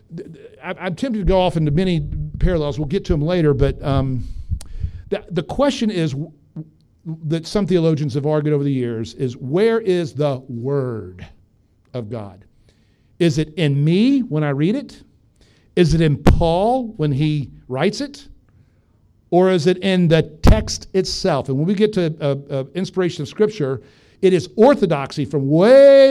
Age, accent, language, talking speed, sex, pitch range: 50-69, American, English, 165 wpm, male, 135-185 Hz